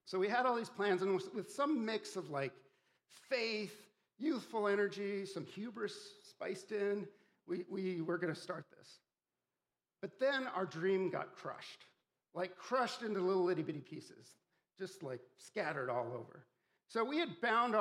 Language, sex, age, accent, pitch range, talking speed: English, male, 50-69, American, 160-210 Hz, 160 wpm